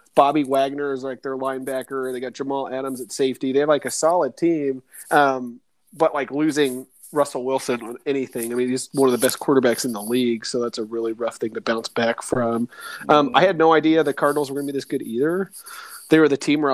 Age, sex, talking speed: 30-49, male, 235 wpm